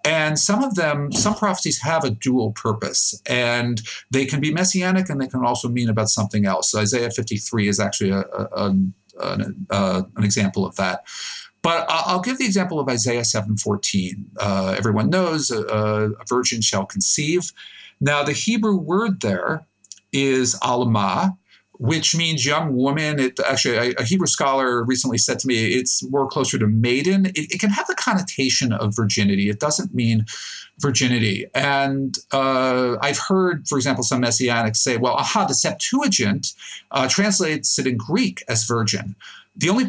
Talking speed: 170 wpm